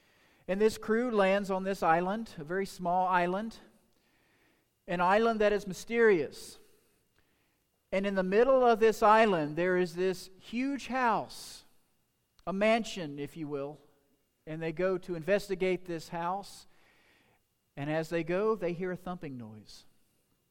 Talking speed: 145 wpm